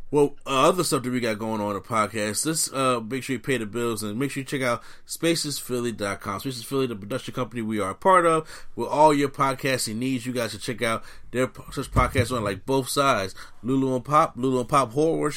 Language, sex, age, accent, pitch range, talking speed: English, male, 30-49, American, 120-145 Hz, 235 wpm